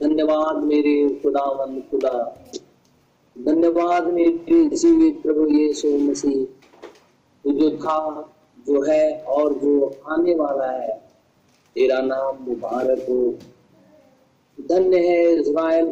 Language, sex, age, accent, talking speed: Hindi, male, 50-69, native, 95 wpm